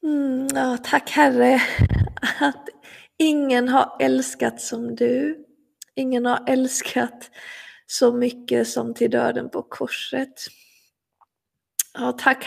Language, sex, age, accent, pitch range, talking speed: Swedish, female, 20-39, native, 225-265 Hz, 100 wpm